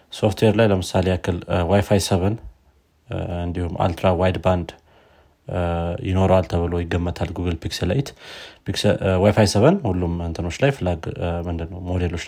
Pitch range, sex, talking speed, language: 85-105 Hz, male, 105 wpm, Amharic